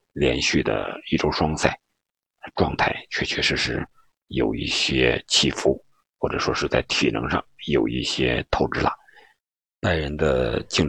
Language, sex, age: Chinese, male, 50-69